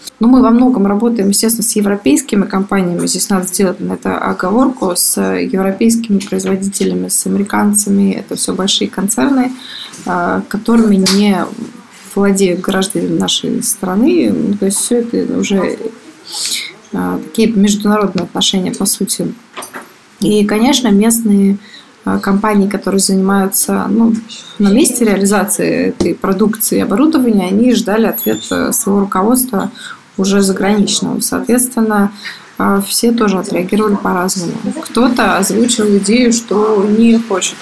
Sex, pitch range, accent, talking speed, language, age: female, 195-235 Hz, native, 115 wpm, Russian, 20-39